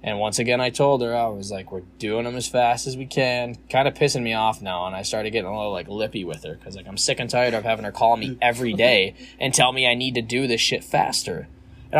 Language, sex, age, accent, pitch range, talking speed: English, male, 20-39, American, 110-140 Hz, 285 wpm